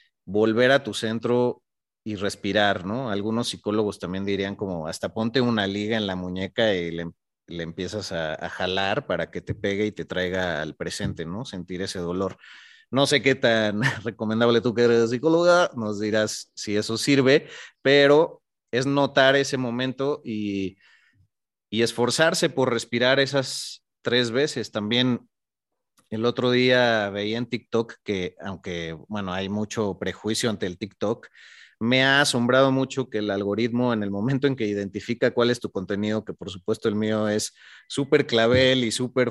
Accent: Mexican